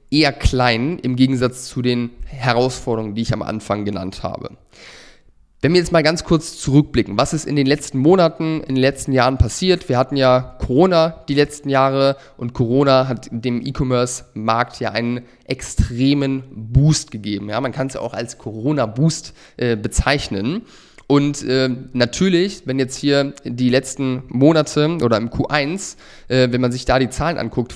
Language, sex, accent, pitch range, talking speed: German, male, German, 120-140 Hz, 165 wpm